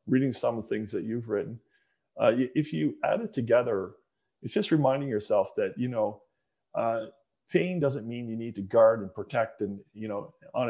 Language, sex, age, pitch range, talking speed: English, male, 40-59, 110-135 Hz, 195 wpm